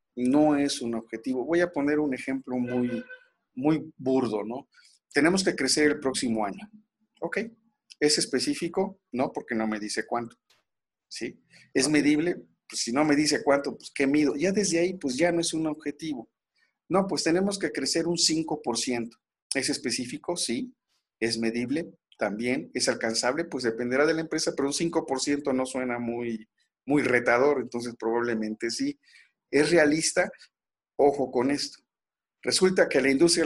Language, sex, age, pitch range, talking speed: Spanish, male, 50-69, 125-160 Hz, 160 wpm